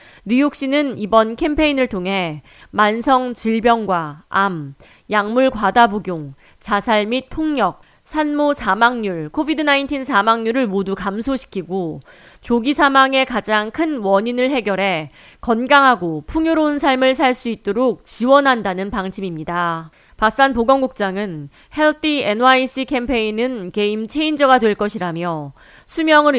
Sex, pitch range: female, 195-265 Hz